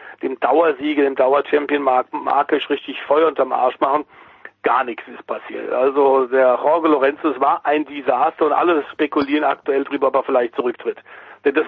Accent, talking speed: German, 170 wpm